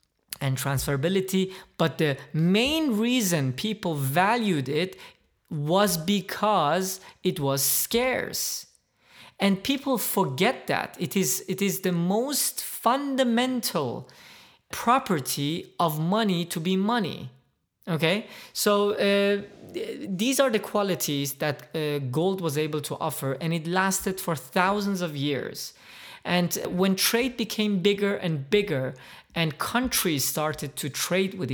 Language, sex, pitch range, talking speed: English, male, 145-195 Hz, 125 wpm